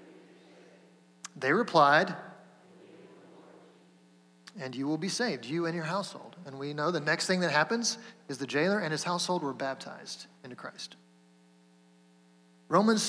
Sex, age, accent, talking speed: male, 30-49, American, 140 wpm